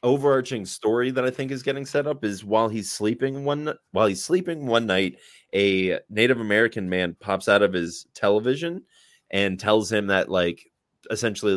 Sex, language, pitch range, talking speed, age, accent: male, English, 90-115 Hz, 175 wpm, 20-39, American